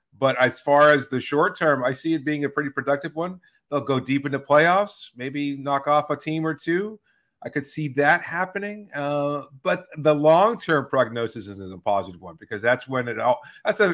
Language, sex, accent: English, male, American